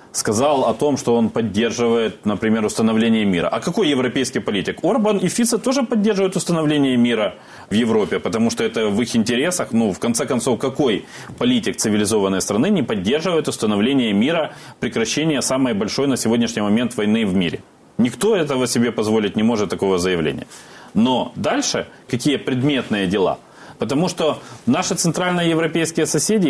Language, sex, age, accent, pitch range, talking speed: Russian, male, 30-49, native, 110-165 Hz, 155 wpm